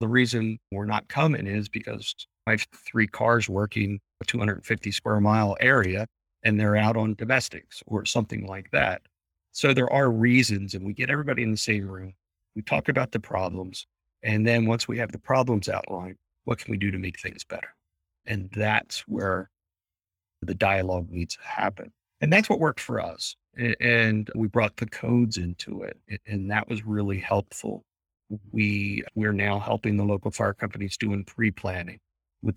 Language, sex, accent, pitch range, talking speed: English, male, American, 95-115 Hz, 175 wpm